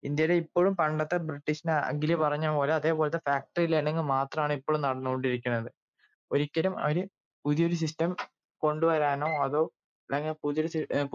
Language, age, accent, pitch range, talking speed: Malayalam, 20-39, native, 140-165 Hz, 110 wpm